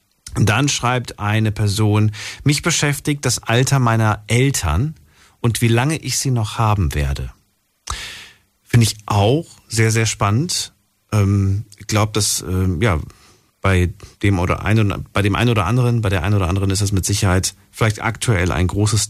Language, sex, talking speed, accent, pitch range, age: German, male, 165 wpm, German, 90-120 Hz, 40-59